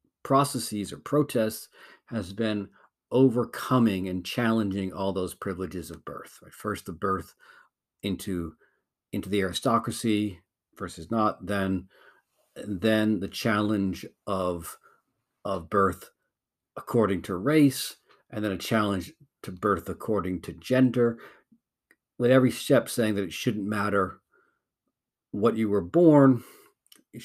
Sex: male